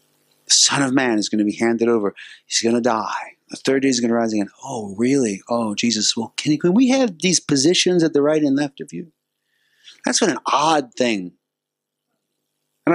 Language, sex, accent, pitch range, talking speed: English, male, American, 120-180 Hz, 220 wpm